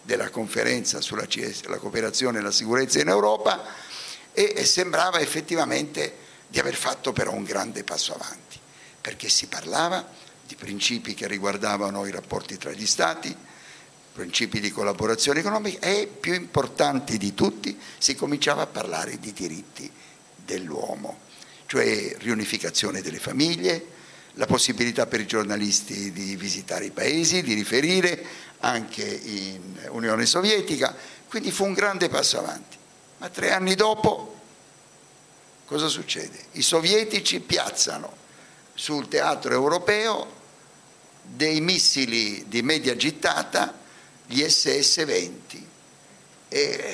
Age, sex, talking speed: 50-69, male, 120 wpm